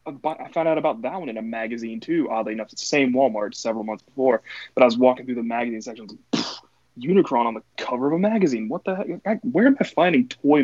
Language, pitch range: English, 110-160 Hz